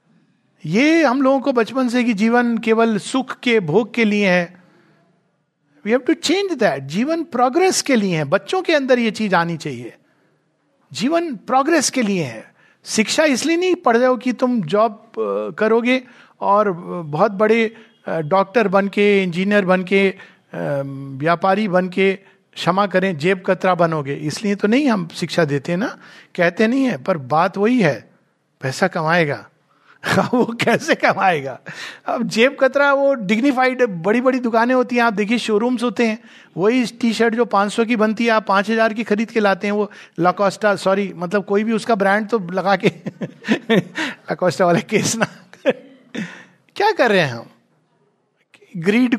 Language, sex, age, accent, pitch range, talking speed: Hindi, male, 50-69, native, 185-240 Hz, 165 wpm